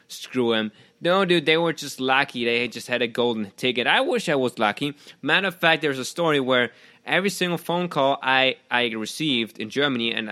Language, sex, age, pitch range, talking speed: English, male, 20-39, 110-145 Hz, 210 wpm